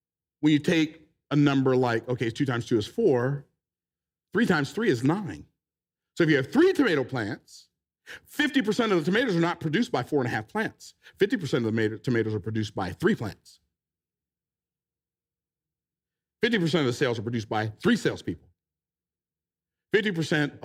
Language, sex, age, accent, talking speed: English, male, 50-69, American, 165 wpm